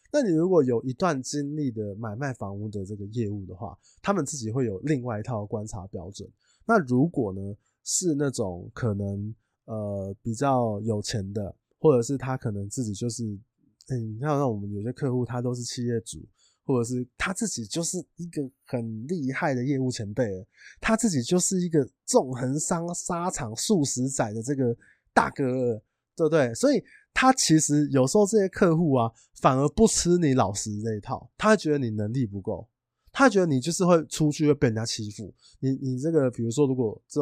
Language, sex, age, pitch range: Chinese, male, 20-39, 115-150 Hz